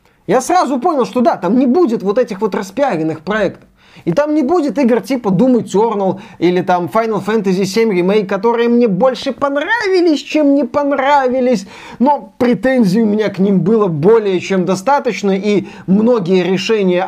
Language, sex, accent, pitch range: Russian, male, native, 180-230 Hz